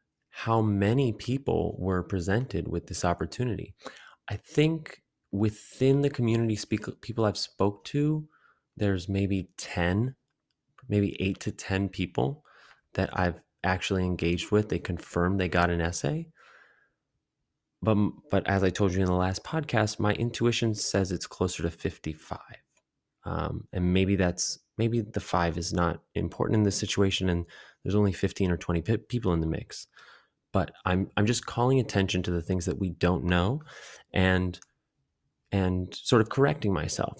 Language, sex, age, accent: English, male, 20-39, American